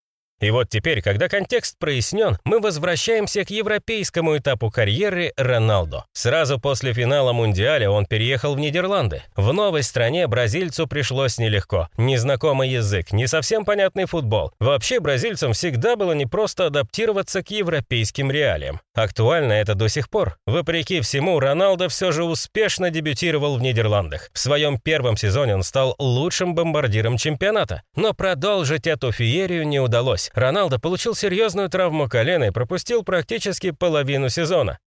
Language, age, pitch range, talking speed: Russian, 30-49, 115-185 Hz, 140 wpm